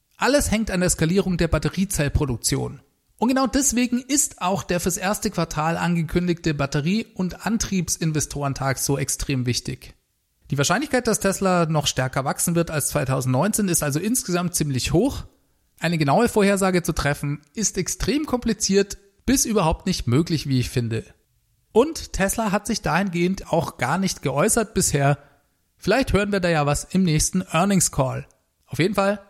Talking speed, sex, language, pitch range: 155 wpm, male, German, 140-200 Hz